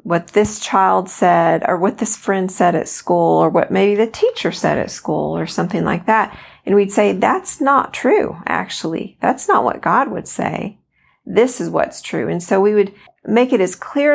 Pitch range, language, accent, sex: 180-225 Hz, English, American, female